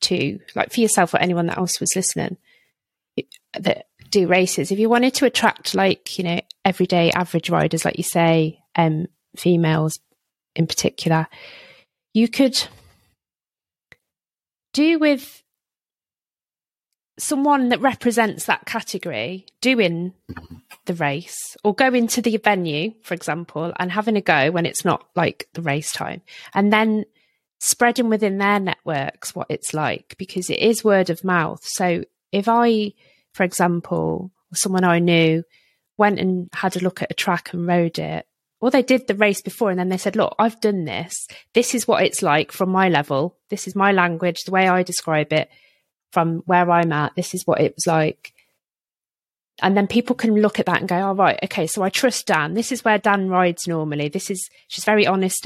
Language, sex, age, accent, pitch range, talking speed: English, female, 30-49, British, 170-215 Hz, 175 wpm